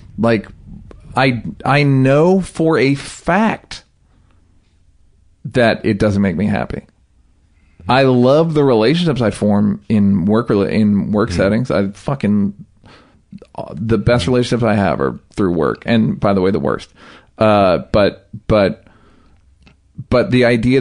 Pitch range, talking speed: 100-125 Hz, 135 wpm